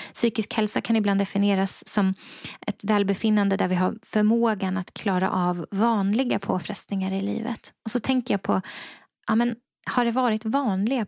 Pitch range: 200-230 Hz